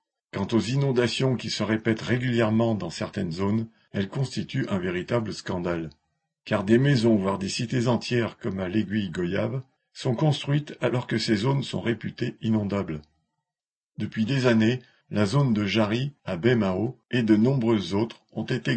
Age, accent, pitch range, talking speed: 50-69, French, 105-125 Hz, 160 wpm